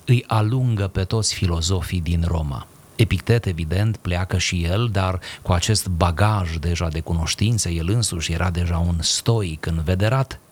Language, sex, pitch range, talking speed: Romanian, male, 90-110 Hz, 150 wpm